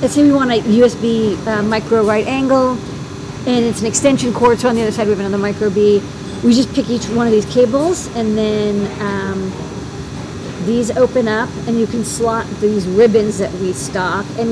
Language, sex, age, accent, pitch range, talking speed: English, female, 40-59, American, 185-230 Hz, 205 wpm